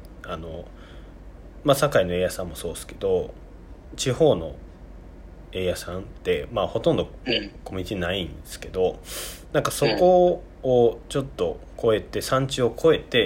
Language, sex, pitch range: Japanese, male, 85-115 Hz